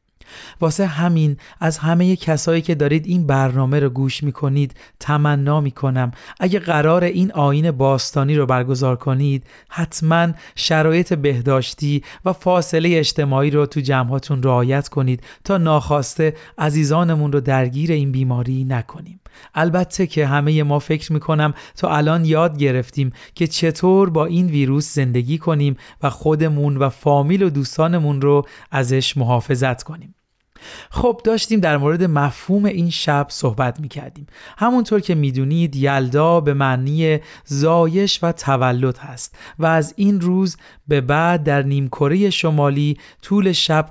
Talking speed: 135 wpm